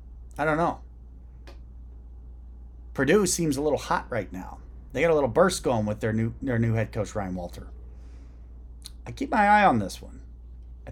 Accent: American